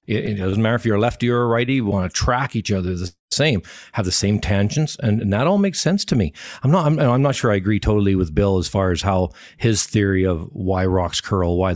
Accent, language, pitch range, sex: American, English, 100-145 Hz, male